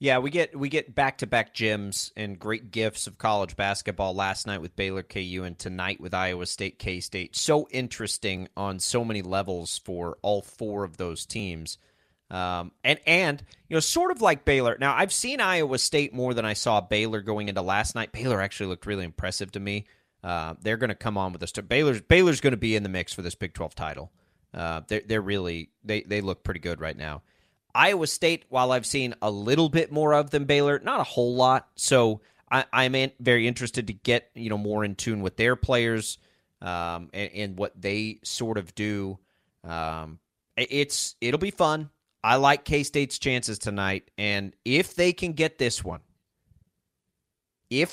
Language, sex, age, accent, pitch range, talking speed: English, male, 30-49, American, 95-130 Hz, 200 wpm